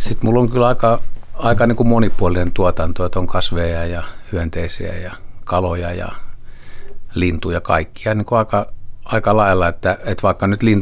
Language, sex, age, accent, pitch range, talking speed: Finnish, male, 50-69, native, 90-110 Hz, 155 wpm